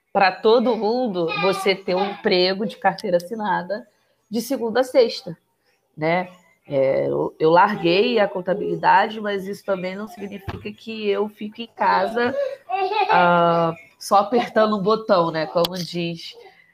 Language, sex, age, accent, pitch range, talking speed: Portuguese, female, 20-39, Brazilian, 185-240 Hz, 135 wpm